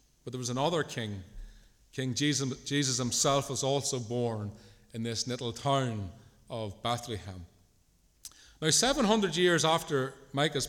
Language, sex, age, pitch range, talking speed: English, male, 40-59, 115-150 Hz, 130 wpm